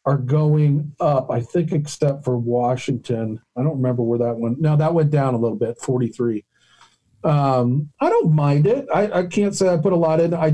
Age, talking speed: 50-69, 210 wpm